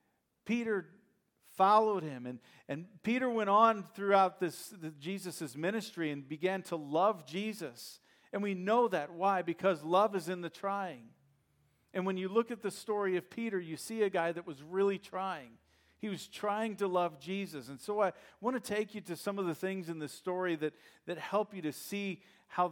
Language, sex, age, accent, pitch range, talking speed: English, male, 40-59, American, 130-195 Hz, 190 wpm